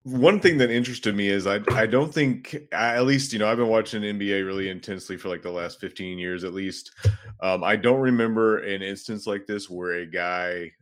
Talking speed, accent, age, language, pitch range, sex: 220 wpm, American, 30-49, English, 90-110 Hz, male